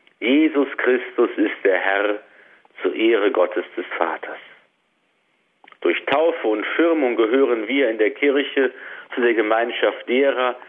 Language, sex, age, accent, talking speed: German, male, 50-69, German, 130 wpm